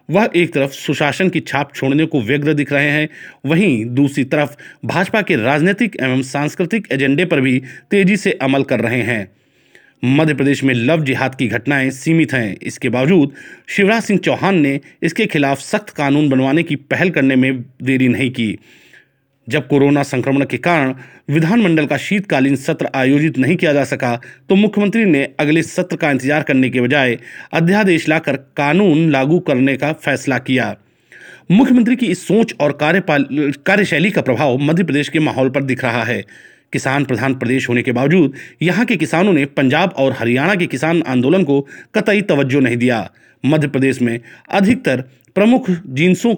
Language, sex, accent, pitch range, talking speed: Hindi, male, native, 130-175 Hz, 170 wpm